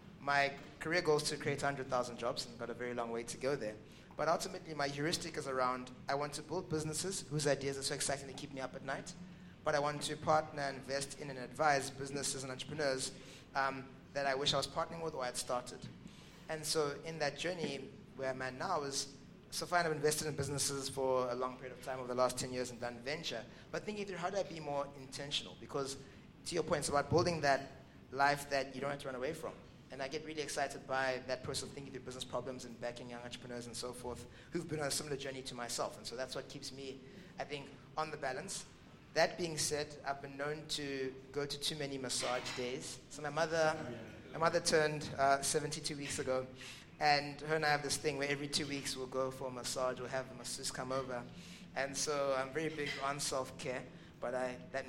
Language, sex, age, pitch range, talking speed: English, male, 20-39, 130-150 Hz, 235 wpm